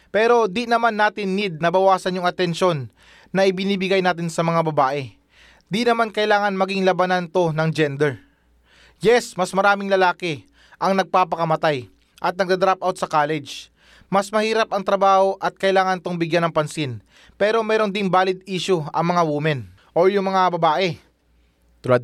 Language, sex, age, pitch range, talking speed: Filipino, male, 20-39, 160-205 Hz, 155 wpm